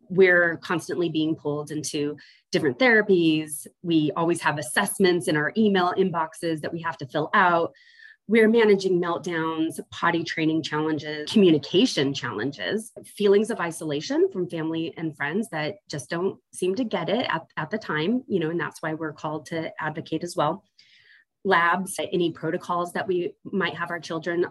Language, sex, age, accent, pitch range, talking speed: English, female, 30-49, American, 160-210 Hz, 165 wpm